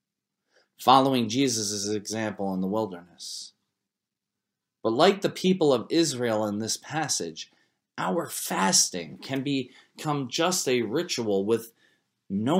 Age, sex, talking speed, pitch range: 30-49, male, 115 wpm, 110-155 Hz